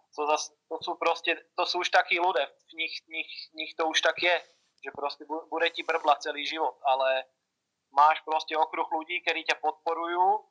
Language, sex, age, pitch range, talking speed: Czech, male, 30-49, 155-180 Hz, 160 wpm